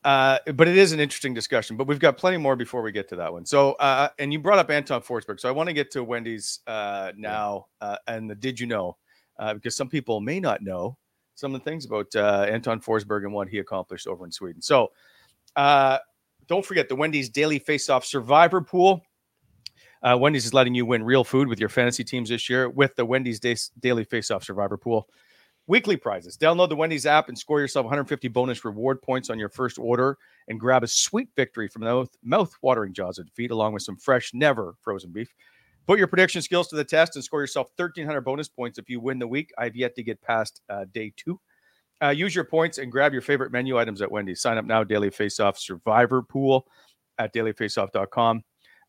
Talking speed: 215 wpm